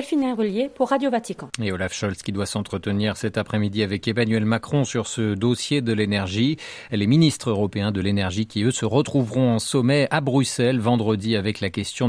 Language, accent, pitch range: French, French, 110-155 Hz